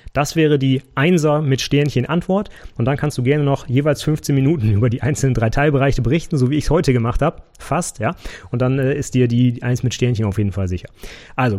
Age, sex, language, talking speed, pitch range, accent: 30-49, male, German, 230 wpm, 115-150 Hz, German